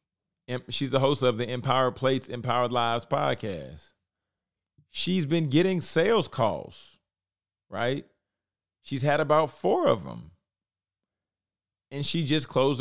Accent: American